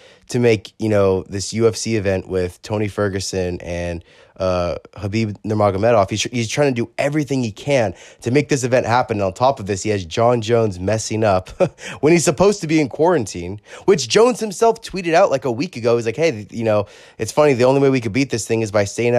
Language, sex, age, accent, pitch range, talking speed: English, male, 20-39, American, 100-120 Hz, 225 wpm